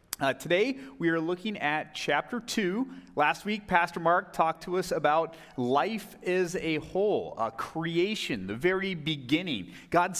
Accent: American